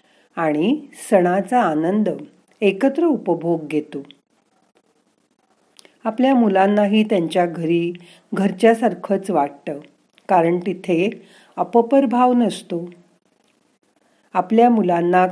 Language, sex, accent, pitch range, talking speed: Marathi, female, native, 170-225 Hz, 75 wpm